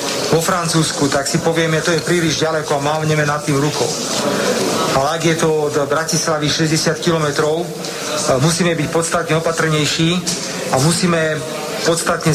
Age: 40-59